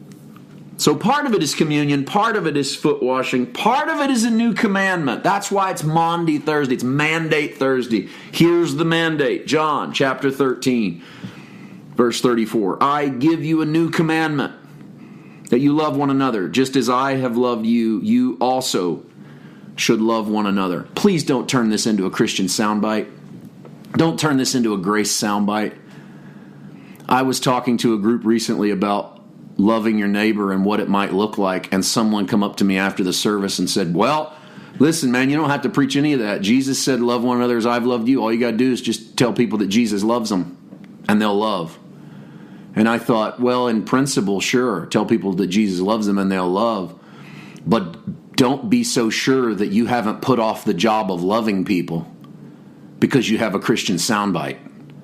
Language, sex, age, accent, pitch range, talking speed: English, male, 40-59, American, 105-150 Hz, 190 wpm